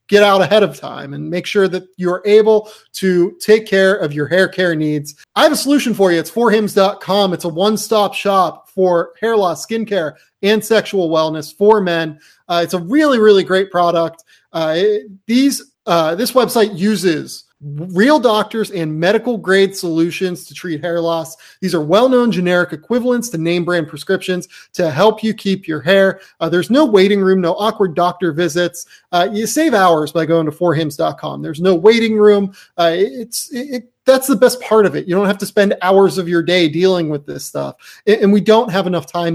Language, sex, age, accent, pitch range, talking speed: English, male, 30-49, American, 165-210 Hz, 195 wpm